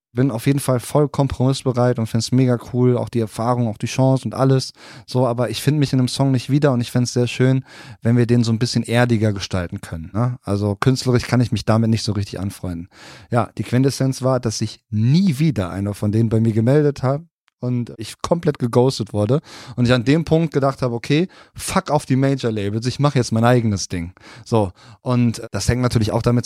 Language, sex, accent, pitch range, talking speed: German, male, German, 110-130 Hz, 225 wpm